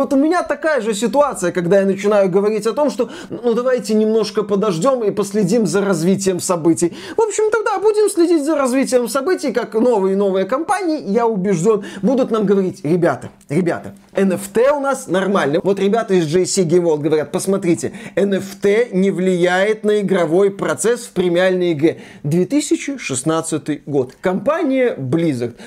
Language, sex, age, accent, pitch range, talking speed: Russian, male, 20-39, native, 185-255 Hz, 155 wpm